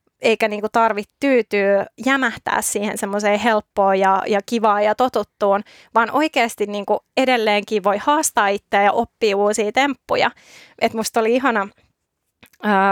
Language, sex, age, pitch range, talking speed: Finnish, female, 20-39, 205-260 Hz, 130 wpm